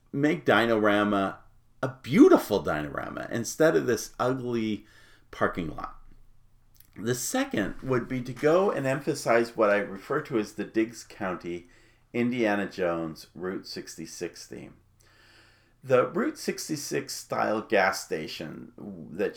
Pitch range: 100-130 Hz